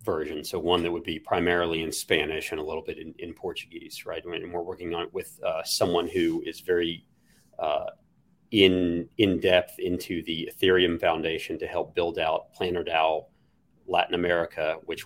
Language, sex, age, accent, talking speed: English, male, 40-59, American, 175 wpm